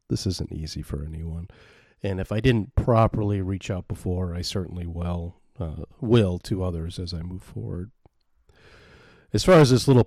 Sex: male